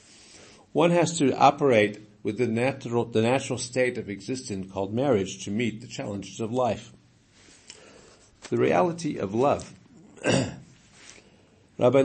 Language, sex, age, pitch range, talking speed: English, male, 50-69, 100-125 Hz, 125 wpm